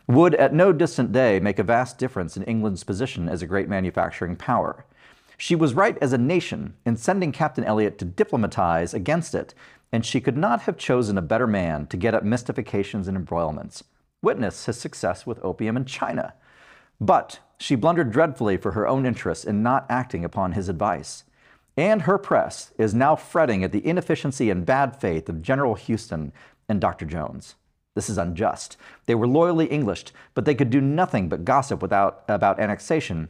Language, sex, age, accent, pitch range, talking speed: English, male, 40-59, American, 100-145 Hz, 185 wpm